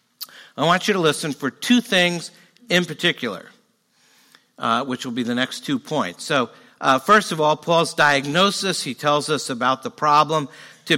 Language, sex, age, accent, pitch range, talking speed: English, male, 60-79, American, 125-175 Hz, 175 wpm